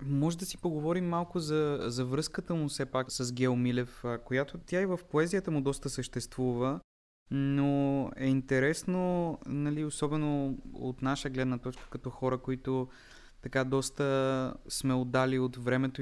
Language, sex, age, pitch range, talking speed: Bulgarian, male, 20-39, 125-140 Hz, 145 wpm